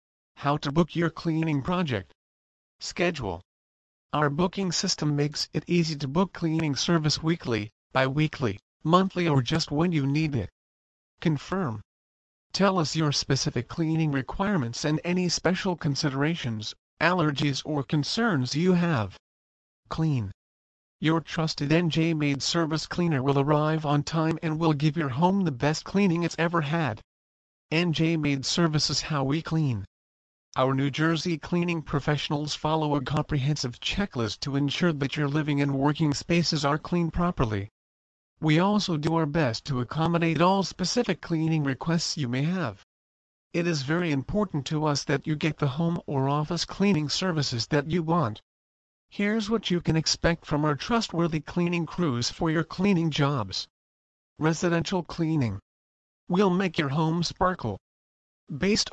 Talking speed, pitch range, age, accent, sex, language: 145 wpm, 130-170 Hz, 40-59, American, male, English